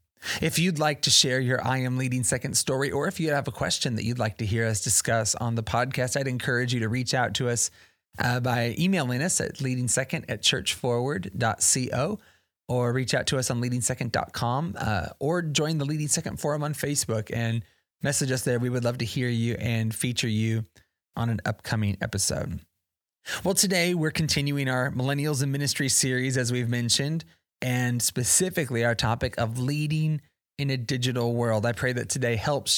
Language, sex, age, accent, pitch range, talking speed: English, male, 30-49, American, 115-140 Hz, 185 wpm